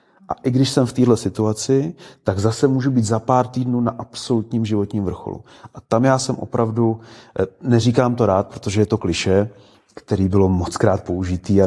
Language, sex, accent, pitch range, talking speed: Czech, male, native, 90-110 Hz, 180 wpm